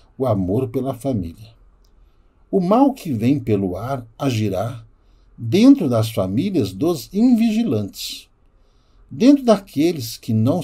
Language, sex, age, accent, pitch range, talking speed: Portuguese, male, 60-79, Brazilian, 105-145 Hz, 115 wpm